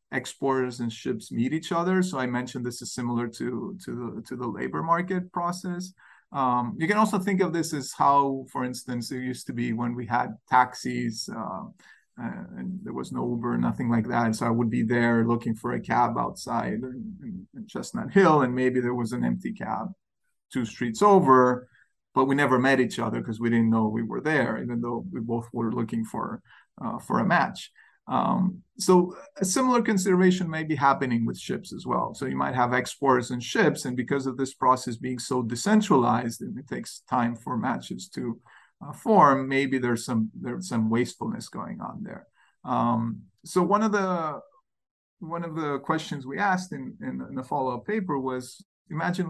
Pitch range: 120-180 Hz